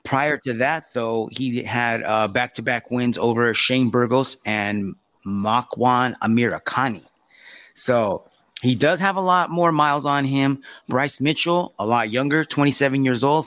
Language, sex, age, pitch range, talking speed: English, male, 30-49, 120-155 Hz, 150 wpm